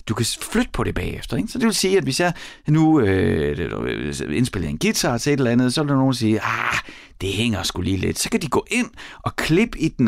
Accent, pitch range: native, 95-155 Hz